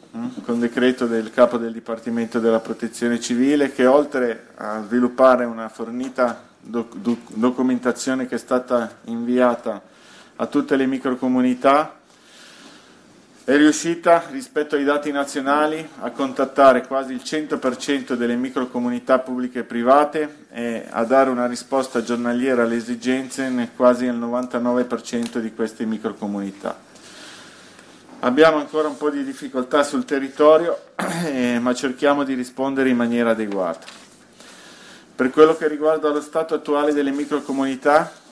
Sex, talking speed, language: male, 130 wpm, Italian